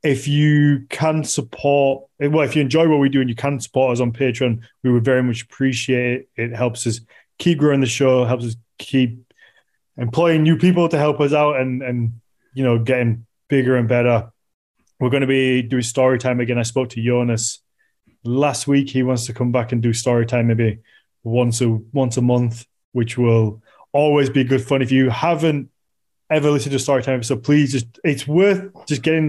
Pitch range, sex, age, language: 120-140 Hz, male, 20-39, English